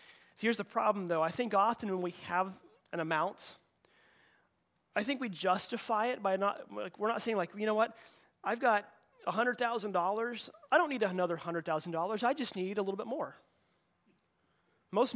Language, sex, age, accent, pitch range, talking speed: English, male, 30-49, American, 170-225 Hz, 165 wpm